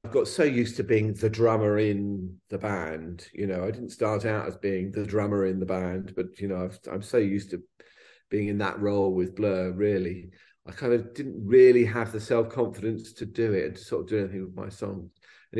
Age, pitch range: 40-59, 95-110 Hz